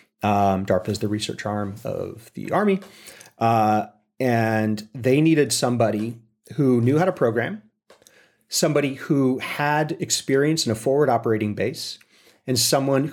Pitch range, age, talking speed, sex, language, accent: 110-145 Hz, 30-49, 135 wpm, male, English, American